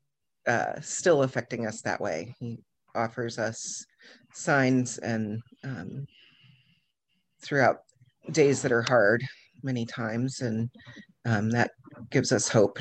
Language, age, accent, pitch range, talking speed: English, 40-59, American, 120-135 Hz, 115 wpm